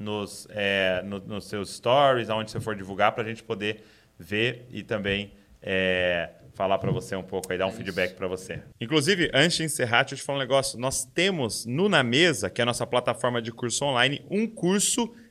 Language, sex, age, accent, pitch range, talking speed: Portuguese, male, 20-39, Brazilian, 115-155 Hz, 195 wpm